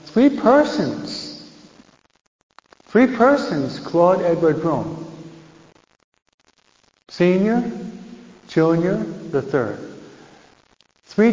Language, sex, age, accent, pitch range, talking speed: English, male, 60-79, American, 140-200 Hz, 65 wpm